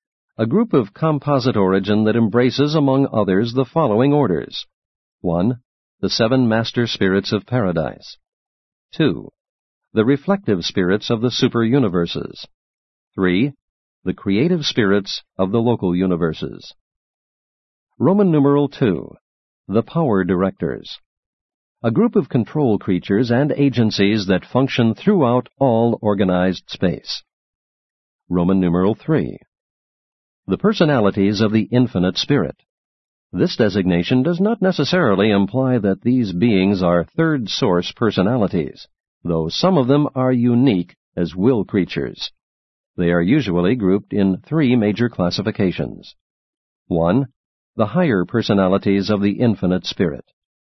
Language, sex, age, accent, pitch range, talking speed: English, male, 50-69, American, 95-135 Hz, 115 wpm